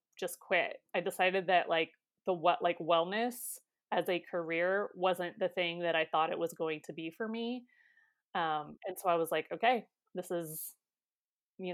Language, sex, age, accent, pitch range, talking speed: English, female, 30-49, American, 165-200 Hz, 185 wpm